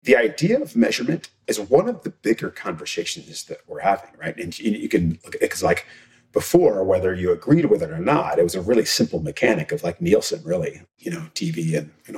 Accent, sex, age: American, male, 40-59